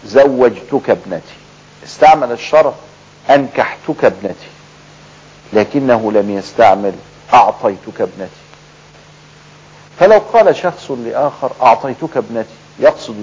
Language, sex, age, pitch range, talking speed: Arabic, male, 50-69, 110-160 Hz, 80 wpm